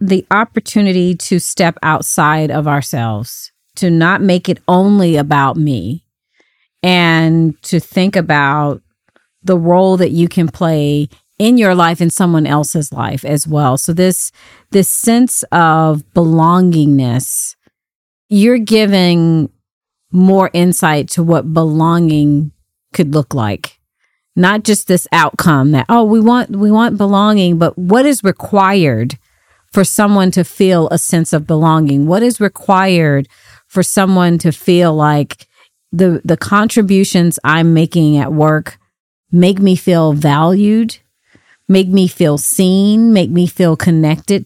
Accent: American